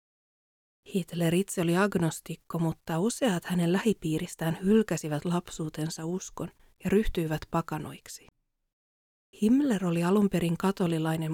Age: 30-49